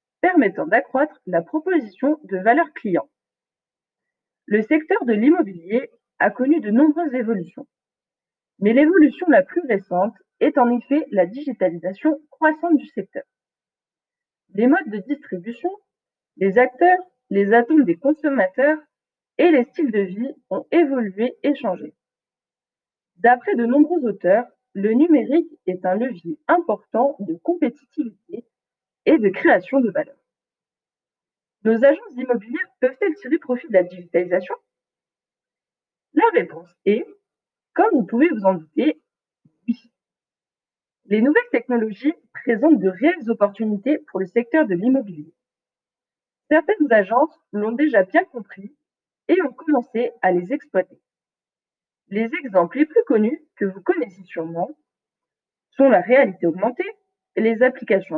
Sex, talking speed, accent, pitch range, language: female, 125 wpm, French, 205-310 Hz, French